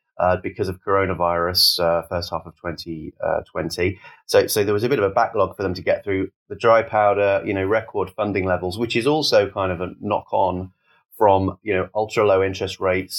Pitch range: 90-110 Hz